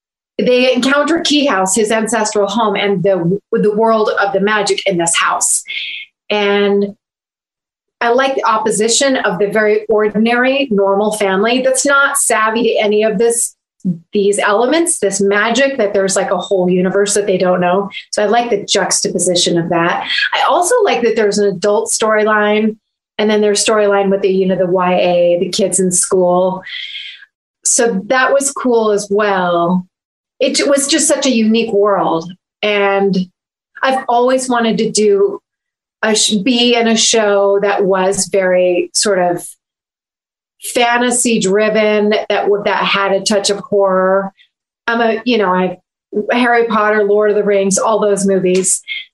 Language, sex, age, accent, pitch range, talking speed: English, female, 30-49, American, 195-235 Hz, 160 wpm